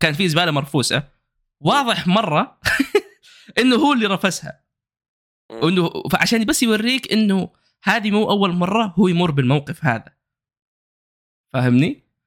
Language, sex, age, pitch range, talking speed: Arabic, male, 20-39, 120-165 Hz, 115 wpm